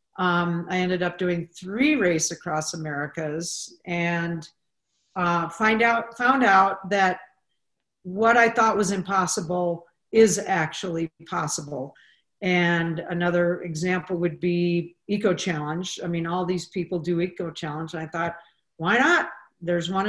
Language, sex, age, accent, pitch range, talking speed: English, female, 50-69, American, 165-195 Hz, 135 wpm